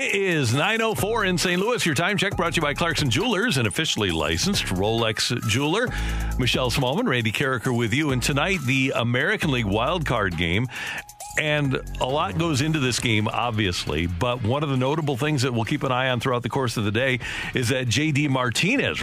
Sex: male